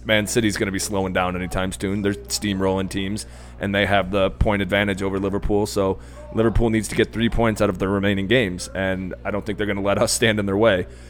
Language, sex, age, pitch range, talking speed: English, male, 20-39, 95-115 Hz, 245 wpm